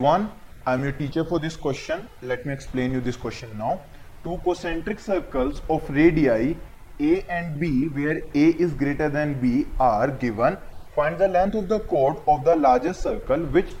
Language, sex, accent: Hindi, male, native